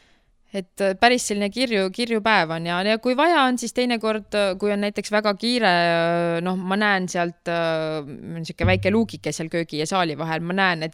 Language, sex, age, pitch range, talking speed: English, female, 20-39, 165-205 Hz, 175 wpm